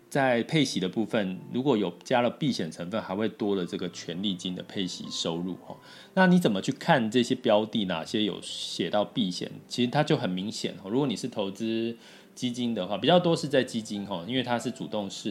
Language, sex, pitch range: Chinese, male, 95-125 Hz